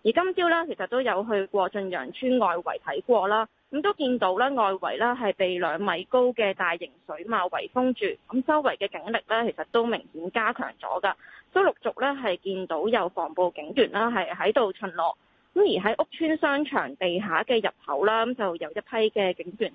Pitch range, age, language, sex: 190-260 Hz, 20-39, Chinese, female